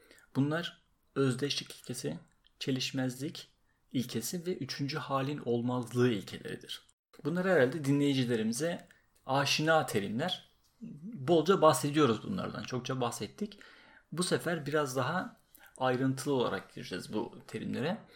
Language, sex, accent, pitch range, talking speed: Turkish, male, native, 120-155 Hz, 95 wpm